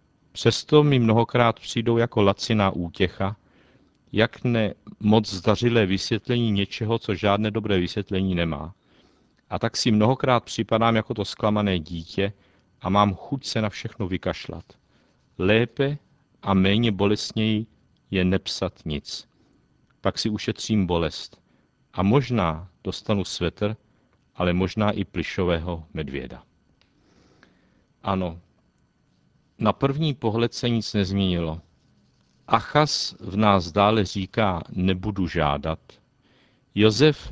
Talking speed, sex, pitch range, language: 110 wpm, male, 90-115 Hz, Czech